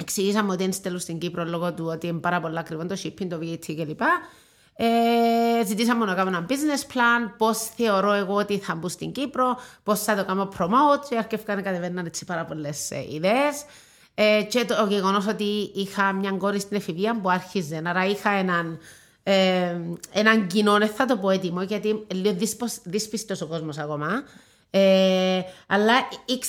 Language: Greek